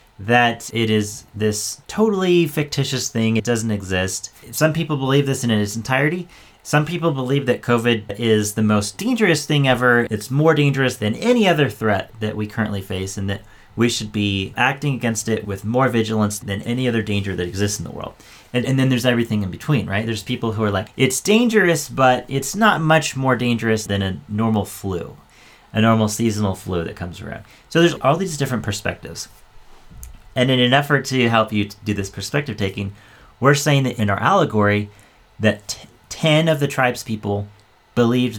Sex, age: male, 30-49